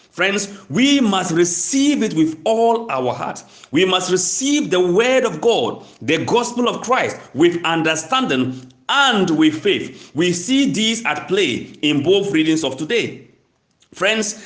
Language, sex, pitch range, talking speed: English, male, 190-265 Hz, 150 wpm